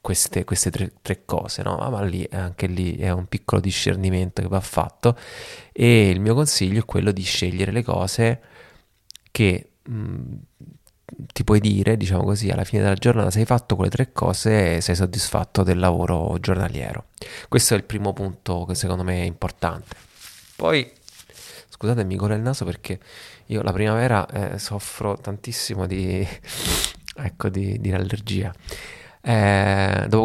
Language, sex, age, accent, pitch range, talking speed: Italian, male, 30-49, native, 95-120 Hz, 155 wpm